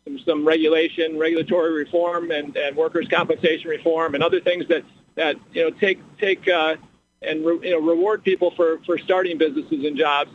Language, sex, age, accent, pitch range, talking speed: English, male, 50-69, American, 165-245 Hz, 180 wpm